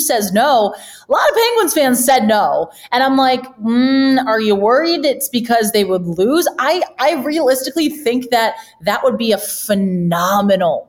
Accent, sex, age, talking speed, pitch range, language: American, female, 20-39, 170 wpm, 180-240 Hz, English